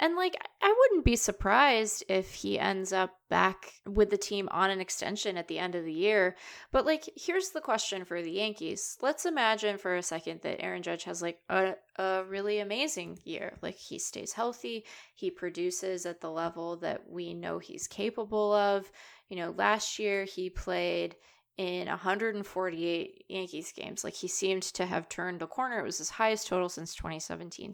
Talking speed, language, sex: 185 wpm, English, female